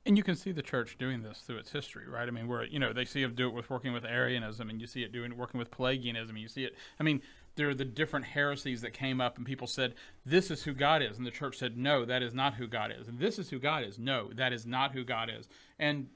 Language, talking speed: English, 300 wpm